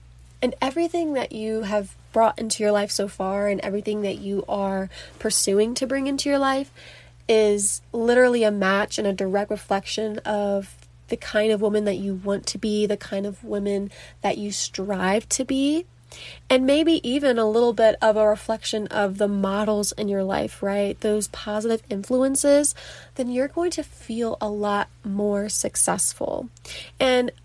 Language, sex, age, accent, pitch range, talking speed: English, female, 20-39, American, 200-240 Hz, 170 wpm